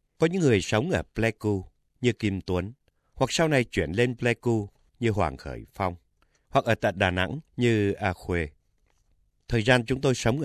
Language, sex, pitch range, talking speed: Vietnamese, male, 90-125 Hz, 185 wpm